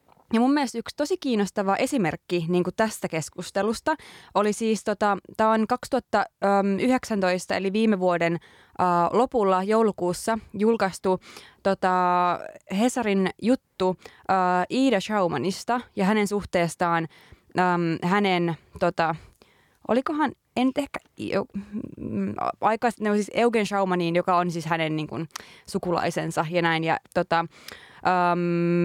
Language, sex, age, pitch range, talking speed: Finnish, female, 20-39, 175-225 Hz, 115 wpm